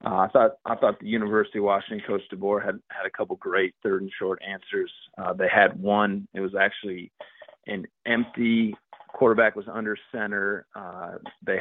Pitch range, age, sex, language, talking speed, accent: 95-115 Hz, 30-49, male, English, 175 wpm, American